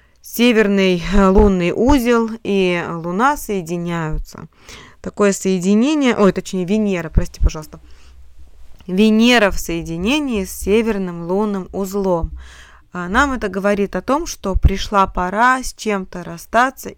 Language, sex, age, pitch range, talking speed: Russian, female, 20-39, 160-210 Hz, 110 wpm